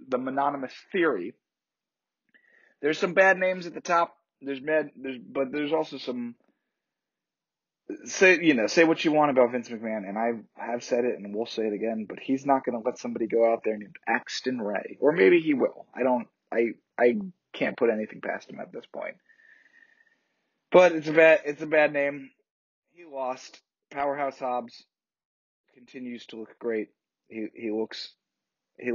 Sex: male